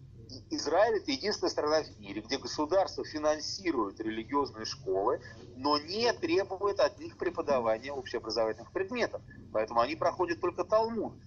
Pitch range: 120-190 Hz